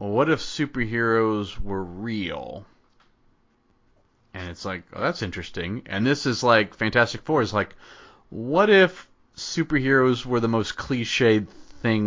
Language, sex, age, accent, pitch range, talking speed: English, male, 30-49, American, 100-125 Hz, 140 wpm